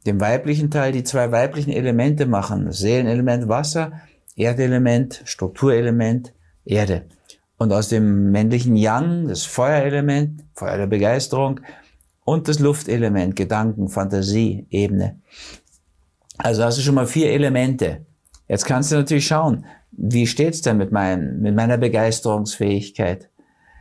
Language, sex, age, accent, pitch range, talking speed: German, male, 50-69, German, 105-135 Hz, 125 wpm